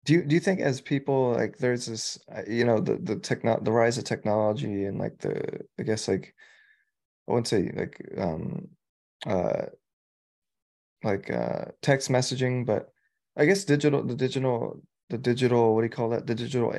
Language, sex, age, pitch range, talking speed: English, male, 20-39, 110-145 Hz, 180 wpm